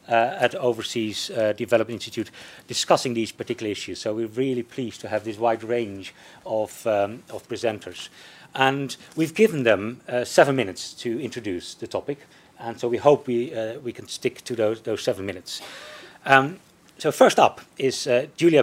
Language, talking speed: English, 175 wpm